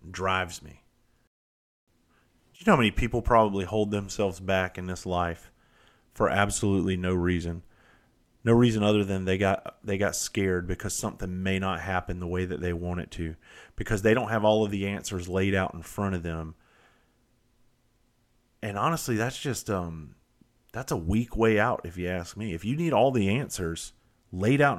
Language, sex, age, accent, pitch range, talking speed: English, male, 30-49, American, 90-120 Hz, 185 wpm